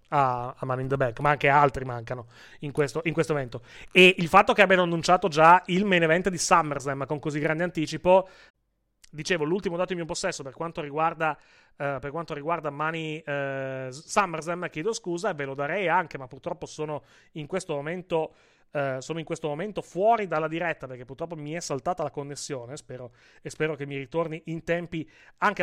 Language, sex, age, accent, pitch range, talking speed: Italian, male, 30-49, native, 150-190 Hz, 190 wpm